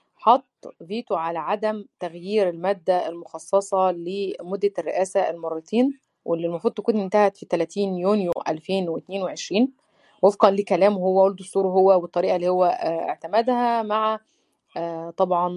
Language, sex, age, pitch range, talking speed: Arabic, female, 30-49, 180-235 Hz, 110 wpm